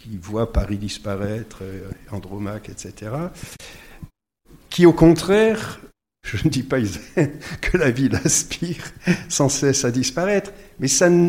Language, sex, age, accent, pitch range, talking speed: French, male, 60-79, French, 105-150 Hz, 115 wpm